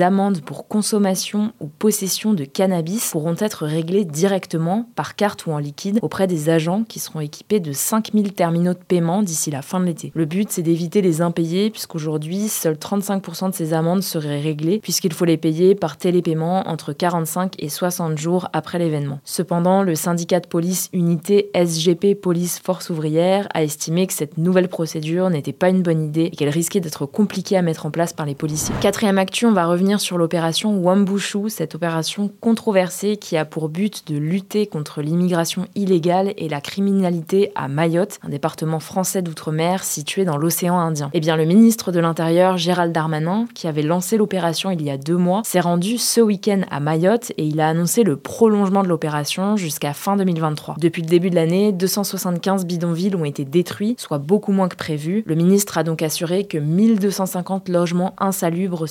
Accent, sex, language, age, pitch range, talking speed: French, female, French, 20-39, 160-195 Hz, 185 wpm